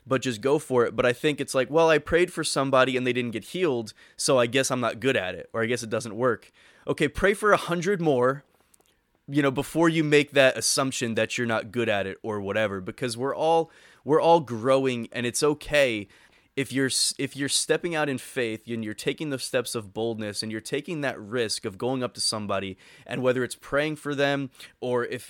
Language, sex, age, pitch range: English, male, 20-39, 120-150 Hz